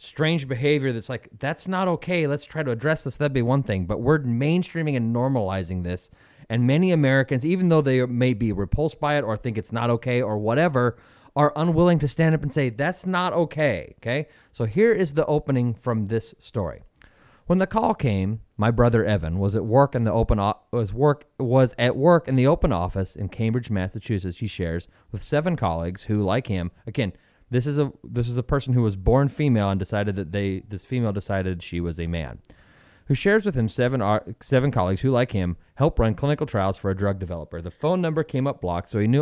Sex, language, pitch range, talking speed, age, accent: male, English, 100-140 Hz, 220 wpm, 30-49, American